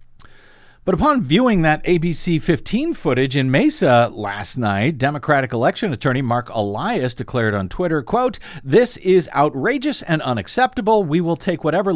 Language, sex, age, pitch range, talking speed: English, male, 50-69, 115-170 Hz, 145 wpm